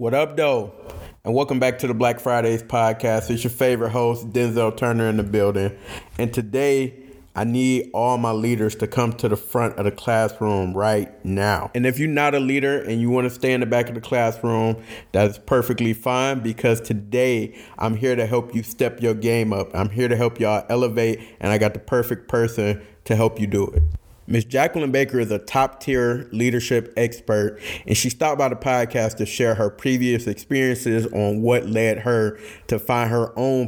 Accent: American